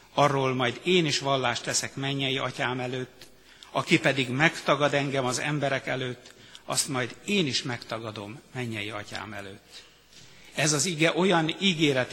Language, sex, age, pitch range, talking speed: Hungarian, male, 60-79, 125-160 Hz, 145 wpm